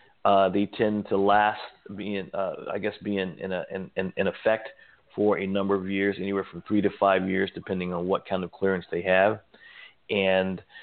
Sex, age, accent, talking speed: male, 40-59, American, 175 wpm